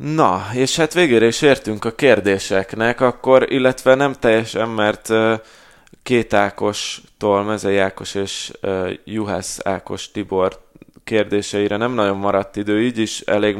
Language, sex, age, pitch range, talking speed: Hungarian, male, 20-39, 100-115 Hz, 135 wpm